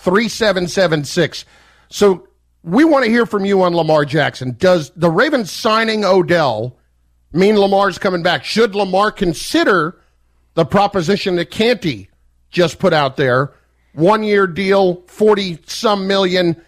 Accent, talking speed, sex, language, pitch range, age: American, 135 wpm, male, English, 140-185 Hz, 50-69